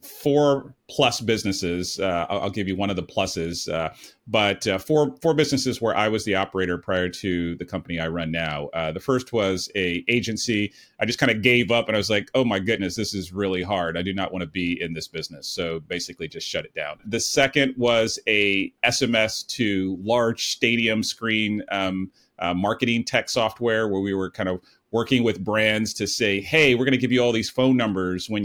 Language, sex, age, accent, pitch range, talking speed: English, male, 30-49, American, 95-120 Hz, 215 wpm